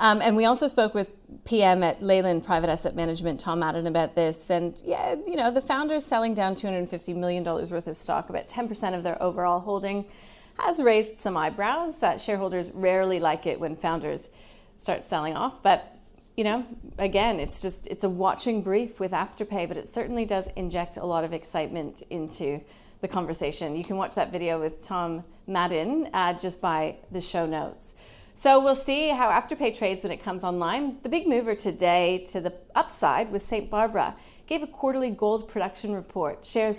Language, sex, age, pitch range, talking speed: English, female, 30-49, 175-215 Hz, 185 wpm